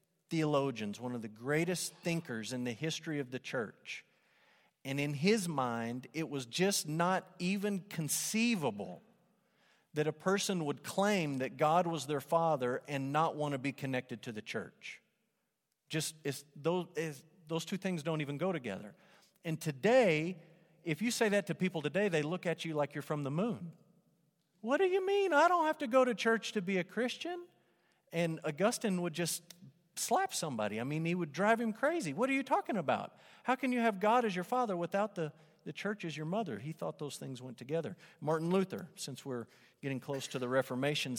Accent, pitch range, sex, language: American, 145-195 Hz, male, English